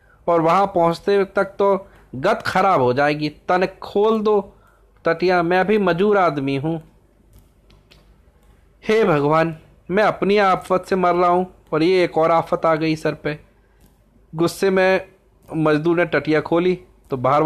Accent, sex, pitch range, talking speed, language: native, male, 140-185 Hz, 150 wpm, Hindi